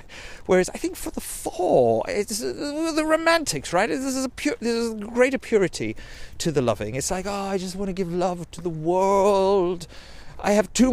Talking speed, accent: 180 wpm, British